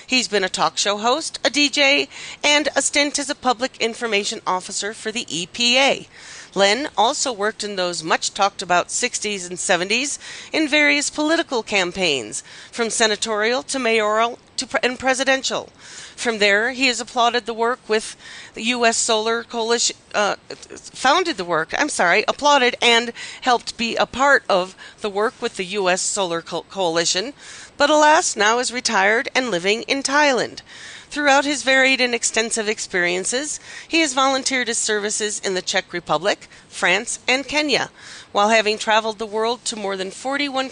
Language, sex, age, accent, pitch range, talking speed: English, female, 40-59, American, 200-265 Hz, 160 wpm